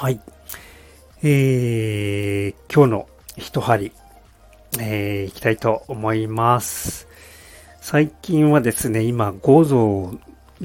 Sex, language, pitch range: male, Japanese, 95-115 Hz